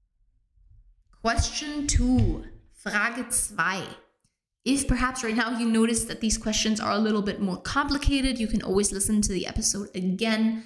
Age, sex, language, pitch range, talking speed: 20-39, female, English, 185-245 Hz, 150 wpm